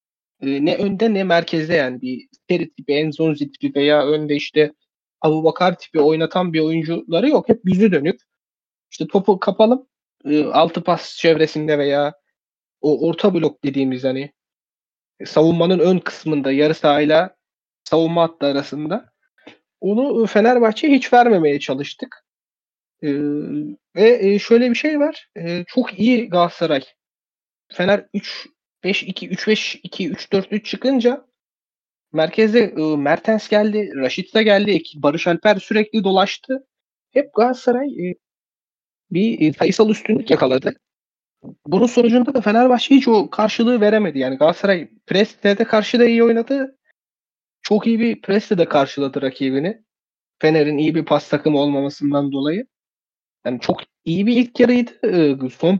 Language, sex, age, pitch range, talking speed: Turkish, male, 30-49, 150-220 Hz, 120 wpm